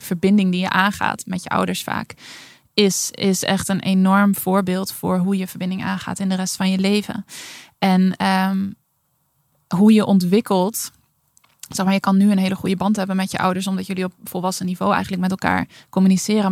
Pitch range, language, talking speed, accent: 185-200 Hz, Dutch, 180 wpm, Dutch